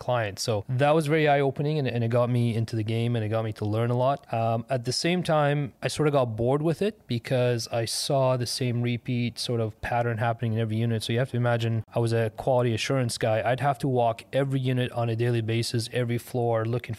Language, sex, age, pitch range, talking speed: English, male, 30-49, 110-125 Hz, 245 wpm